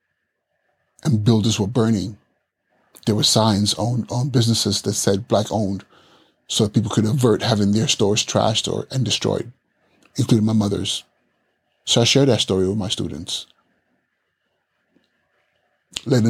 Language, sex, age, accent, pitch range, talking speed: English, male, 30-49, American, 100-120 Hz, 140 wpm